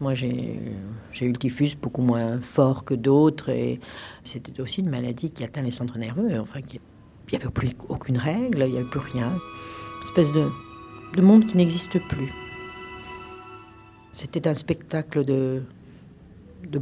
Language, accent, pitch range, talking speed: French, French, 120-155 Hz, 165 wpm